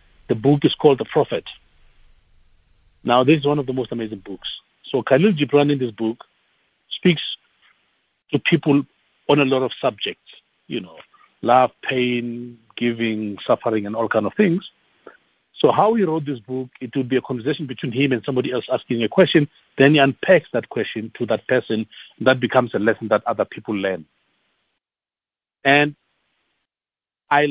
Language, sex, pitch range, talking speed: English, male, 115-145 Hz, 170 wpm